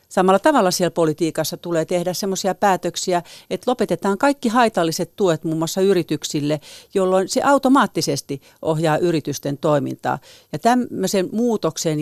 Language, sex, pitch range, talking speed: Finnish, female, 155-210 Hz, 125 wpm